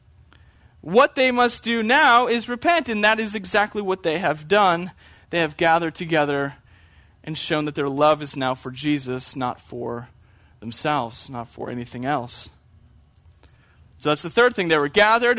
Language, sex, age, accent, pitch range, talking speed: English, male, 30-49, American, 140-220 Hz, 170 wpm